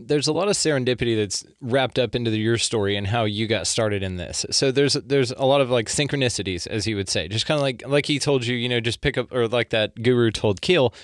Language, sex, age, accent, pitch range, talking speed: English, male, 20-39, American, 110-135 Hz, 270 wpm